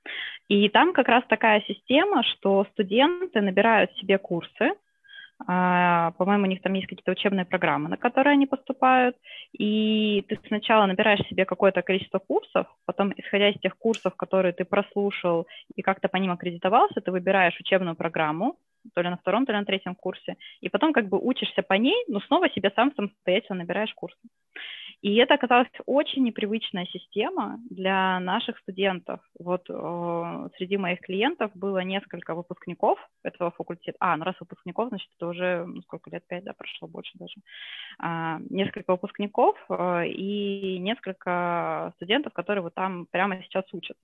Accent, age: native, 20-39